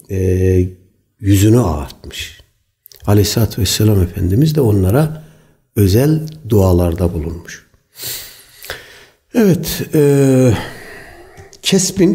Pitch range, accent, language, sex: 100-140 Hz, native, Turkish, male